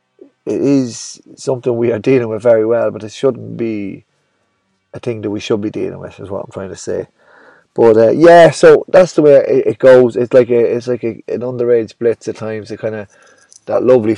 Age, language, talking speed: 30-49, English, 225 wpm